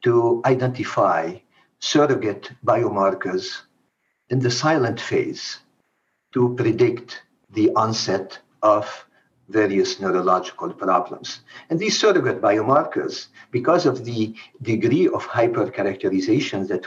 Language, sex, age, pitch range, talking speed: English, male, 50-69, 120-190 Hz, 95 wpm